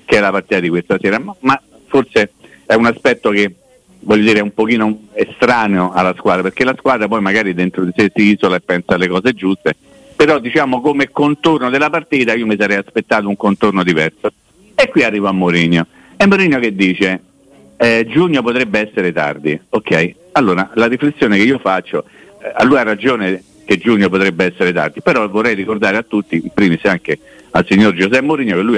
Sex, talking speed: male, 195 wpm